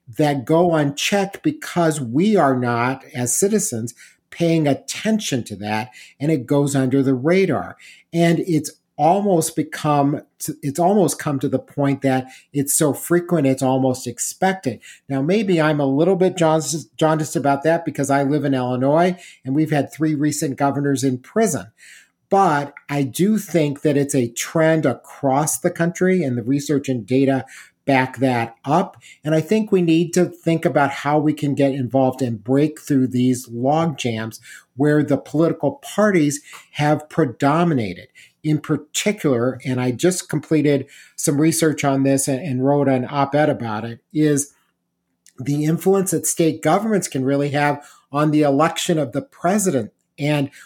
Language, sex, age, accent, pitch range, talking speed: English, male, 50-69, American, 135-165 Hz, 160 wpm